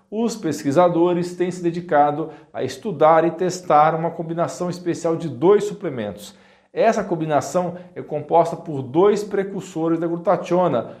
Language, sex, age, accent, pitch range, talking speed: Portuguese, male, 50-69, Brazilian, 160-200 Hz, 130 wpm